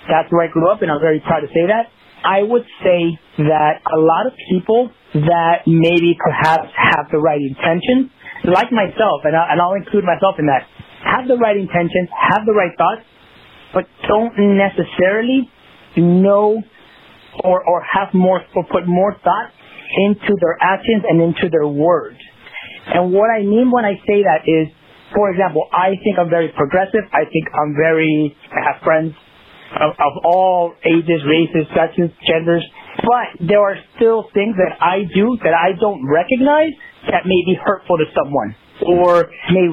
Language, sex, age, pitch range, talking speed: English, male, 30-49, 165-205 Hz, 170 wpm